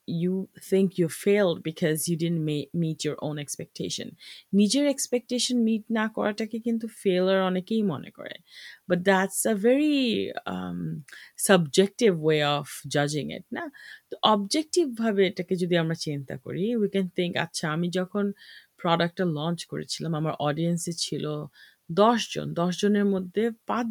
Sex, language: female, English